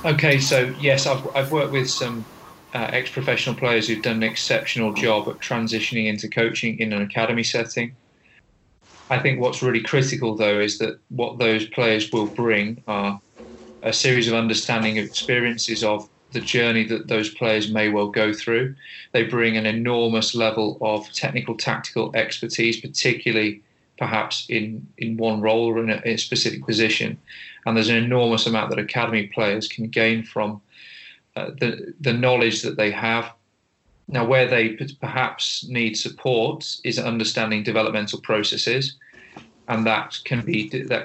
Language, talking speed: English, 160 wpm